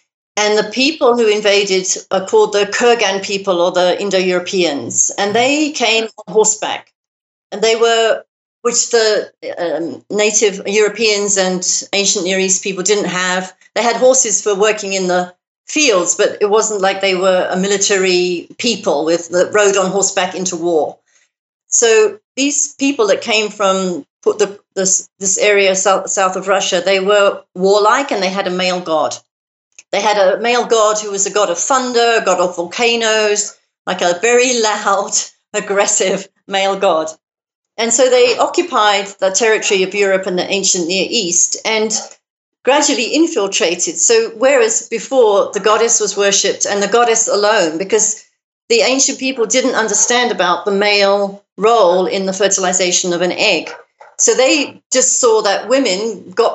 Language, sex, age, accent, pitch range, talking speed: English, female, 40-59, British, 190-235 Hz, 160 wpm